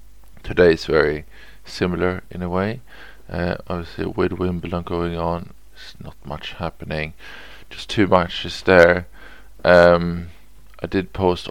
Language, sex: English, male